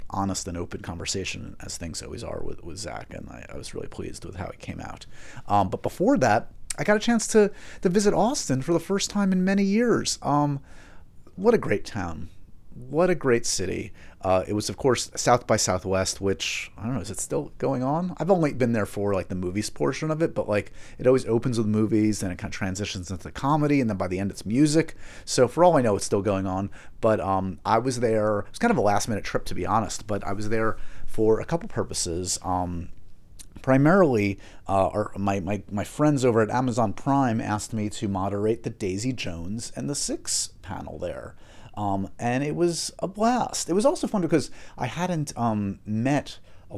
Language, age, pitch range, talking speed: English, 30-49, 95-130 Hz, 220 wpm